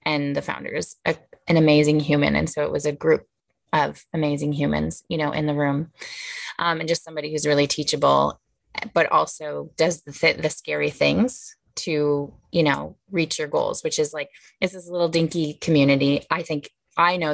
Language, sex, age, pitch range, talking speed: English, female, 20-39, 150-180 Hz, 185 wpm